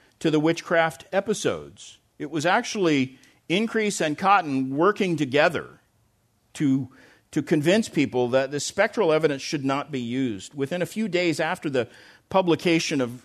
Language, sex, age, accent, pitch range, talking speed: English, male, 50-69, American, 135-175 Hz, 145 wpm